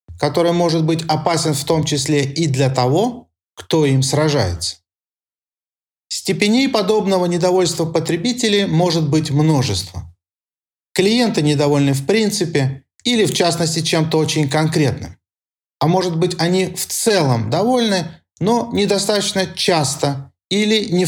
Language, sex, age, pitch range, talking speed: Russian, male, 40-59, 140-185 Hz, 120 wpm